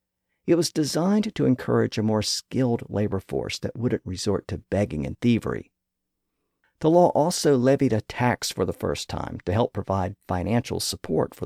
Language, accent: English, American